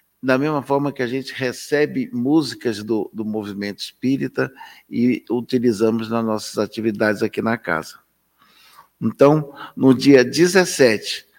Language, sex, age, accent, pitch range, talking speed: Portuguese, male, 60-79, Brazilian, 115-145 Hz, 125 wpm